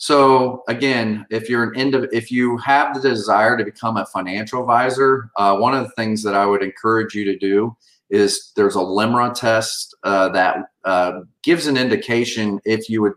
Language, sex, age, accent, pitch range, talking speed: English, male, 40-59, American, 105-130 Hz, 190 wpm